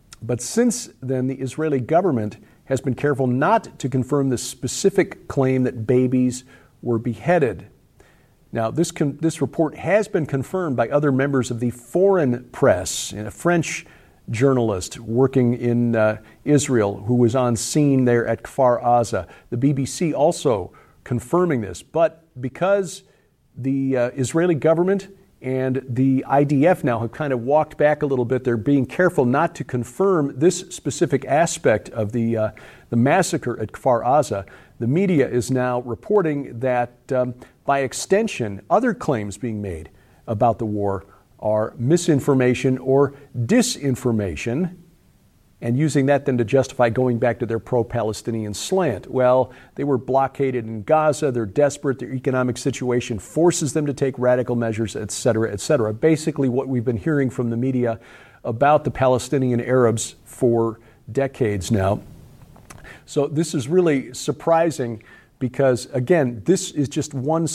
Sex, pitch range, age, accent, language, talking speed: male, 120-150 Hz, 50-69, American, English, 150 wpm